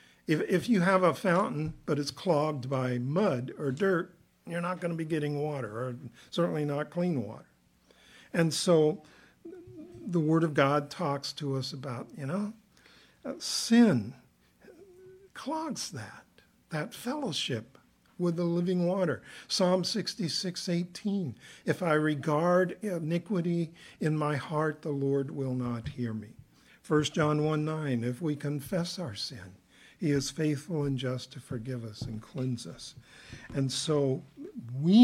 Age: 50-69